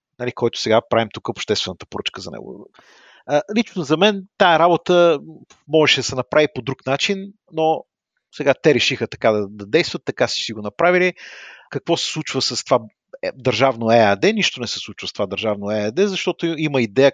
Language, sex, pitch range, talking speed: Bulgarian, male, 115-160 Hz, 175 wpm